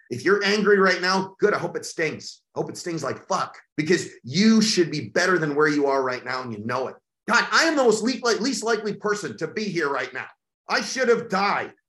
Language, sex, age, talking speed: English, male, 30-49, 245 wpm